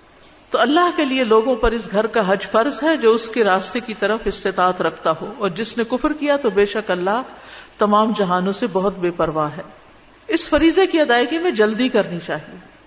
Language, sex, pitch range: Urdu, female, 200-265 Hz